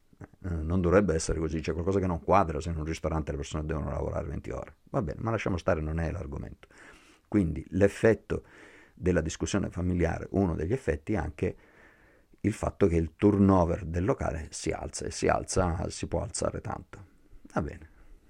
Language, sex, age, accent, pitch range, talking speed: Italian, male, 50-69, native, 85-100 Hz, 180 wpm